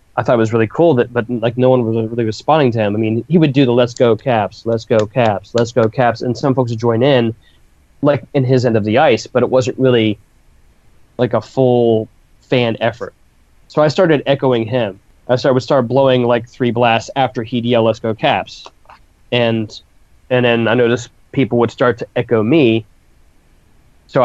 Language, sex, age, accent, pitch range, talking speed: English, male, 20-39, American, 110-125 Hz, 210 wpm